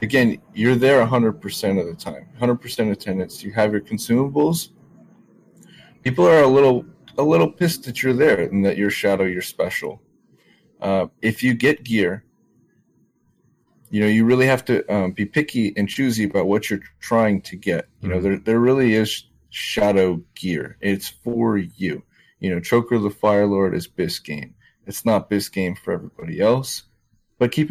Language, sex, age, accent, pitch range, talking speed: English, male, 30-49, American, 100-130 Hz, 180 wpm